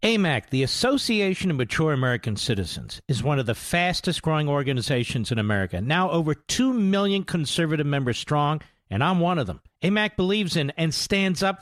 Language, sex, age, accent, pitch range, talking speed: English, male, 50-69, American, 150-210 Hz, 175 wpm